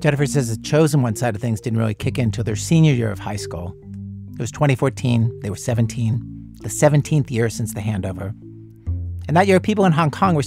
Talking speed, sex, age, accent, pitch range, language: 225 wpm, male, 50-69, American, 105-135 Hz, English